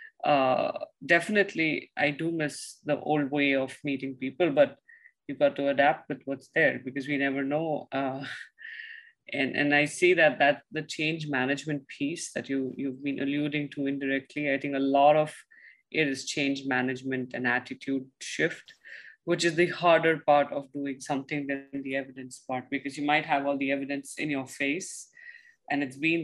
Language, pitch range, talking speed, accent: English, 135-160 Hz, 175 wpm, Indian